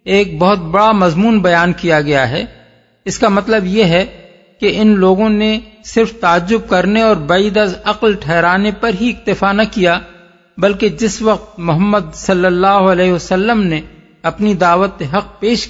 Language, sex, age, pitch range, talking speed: Urdu, male, 50-69, 170-210 Hz, 160 wpm